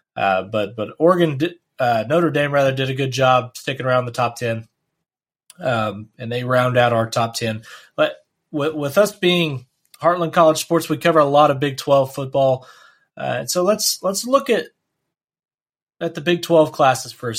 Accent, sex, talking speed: American, male, 175 wpm